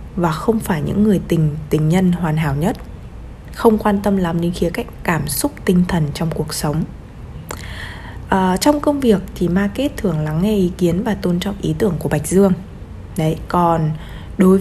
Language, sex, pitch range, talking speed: Vietnamese, female, 155-210 Hz, 195 wpm